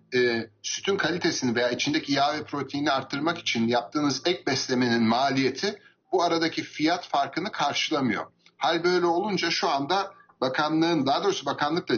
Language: Turkish